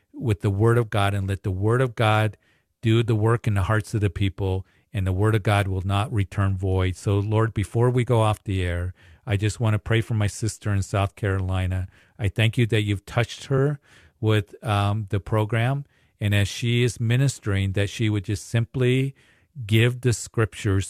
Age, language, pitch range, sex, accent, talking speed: 40-59, English, 100-120 Hz, male, American, 205 wpm